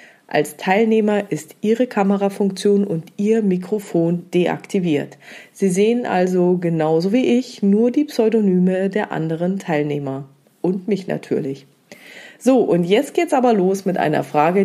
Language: German